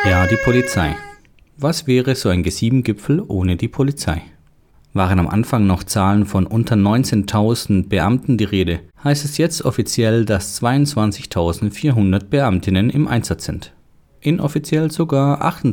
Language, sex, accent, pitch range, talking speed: German, male, German, 95-140 Hz, 130 wpm